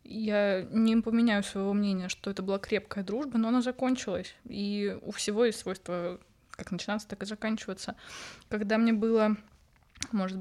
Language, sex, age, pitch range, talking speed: Russian, female, 20-39, 200-230 Hz, 155 wpm